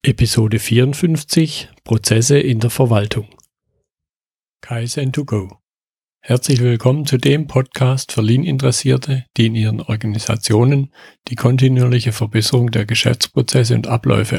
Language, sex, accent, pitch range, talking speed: German, male, German, 110-140 Hz, 110 wpm